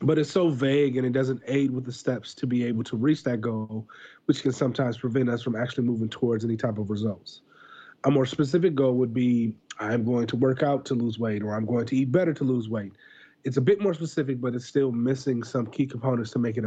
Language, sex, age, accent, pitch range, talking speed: English, male, 30-49, American, 115-140 Hz, 250 wpm